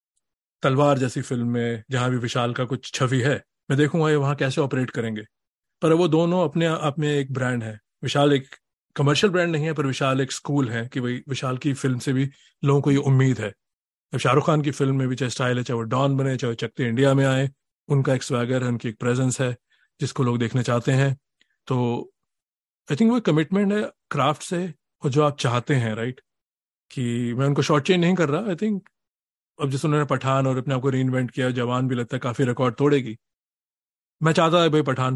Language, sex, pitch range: Hindi, male, 120-150 Hz